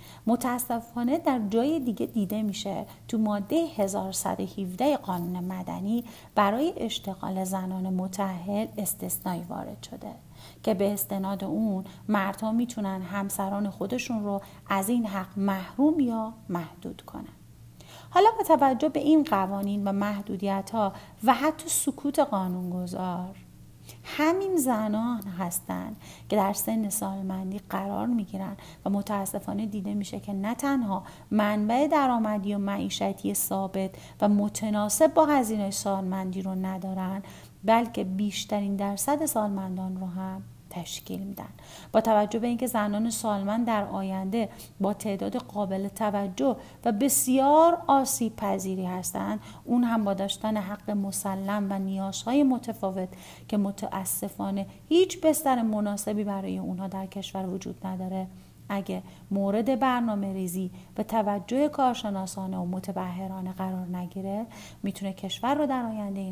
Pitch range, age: 190-230 Hz, 40-59